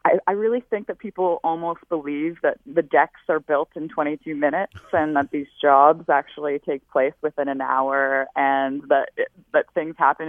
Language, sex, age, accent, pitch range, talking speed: English, female, 20-39, American, 140-175 Hz, 185 wpm